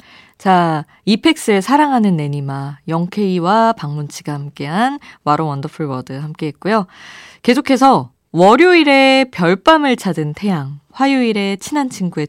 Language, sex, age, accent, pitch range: Korean, female, 20-39, native, 150-235 Hz